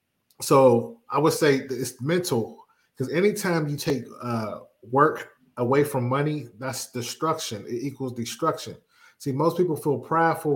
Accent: American